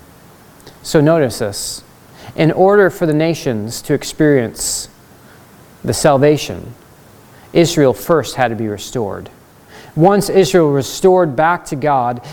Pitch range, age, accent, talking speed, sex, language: 140-185 Hz, 40-59, American, 120 wpm, male, English